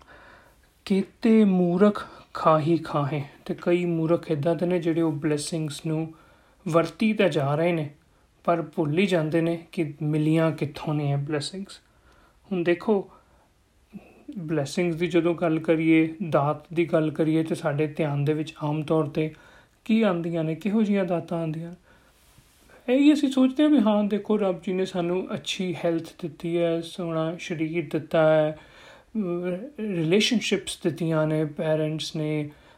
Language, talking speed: Punjabi, 130 wpm